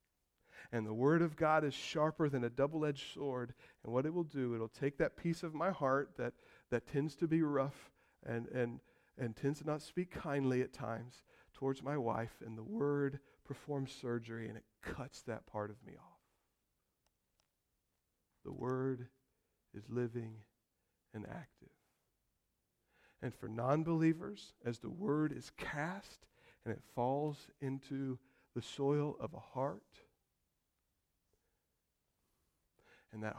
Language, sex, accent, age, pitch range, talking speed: English, male, American, 40-59, 115-145 Hz, 145 wpm